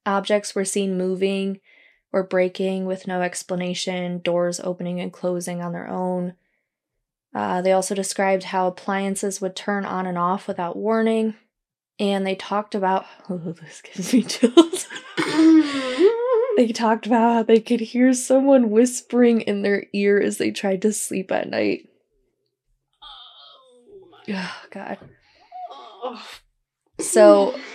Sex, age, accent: female, 20-39, American